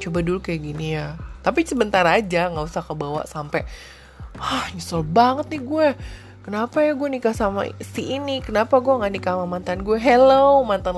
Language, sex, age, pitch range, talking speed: Indonesian, female, 20-39, 150-195 Hz, 180 wpm